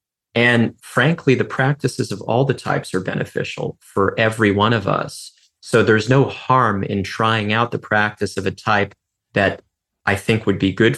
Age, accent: 30-49, American